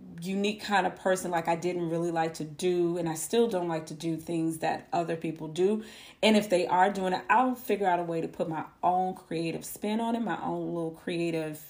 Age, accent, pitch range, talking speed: 30-49, American, 165-205 Hz, 235 wpm